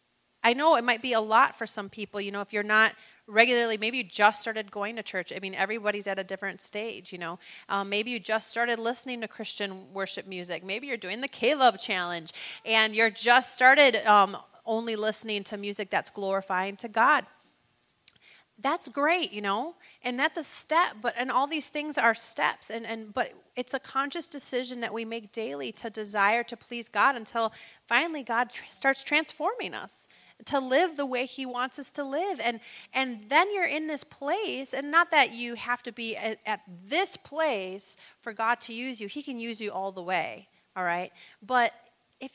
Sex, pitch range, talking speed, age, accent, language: female, 210-265 Hz, 205 wpm, 30-49, American, English